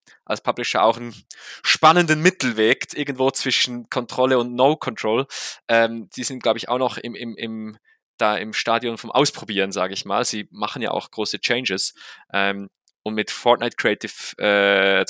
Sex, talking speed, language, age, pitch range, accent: male, 165 wpm, German, 20-39, 105-130 Hz, German